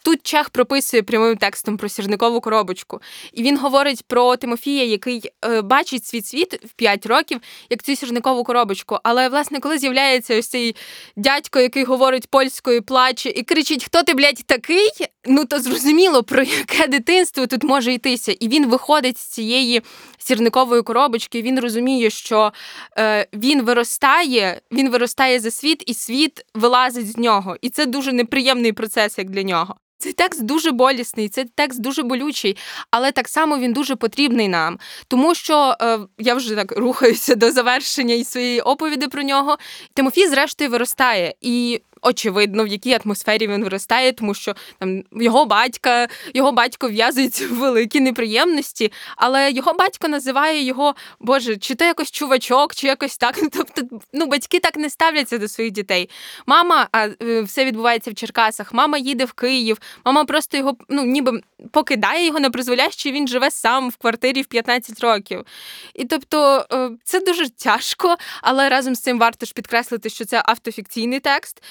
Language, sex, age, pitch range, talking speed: Ukrainian, female, 20-39, 230-280 Hz, 165 wpm